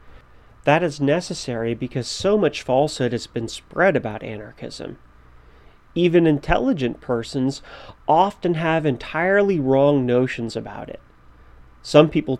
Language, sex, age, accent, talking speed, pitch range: English, male, 30-49, American, 115 wpm, 120-150 Hz